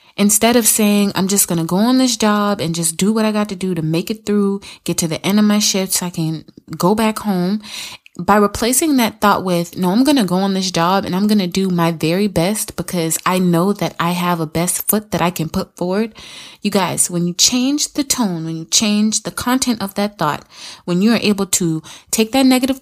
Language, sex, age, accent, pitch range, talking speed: English, female, 20-39, American, 175-220 Hz, 245 wpm